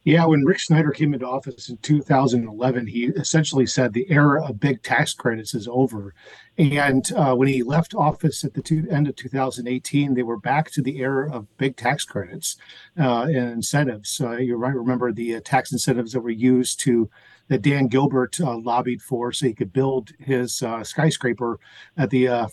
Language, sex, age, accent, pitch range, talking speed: English, male, 40-59, American, 120-145 Hz, 190 wpm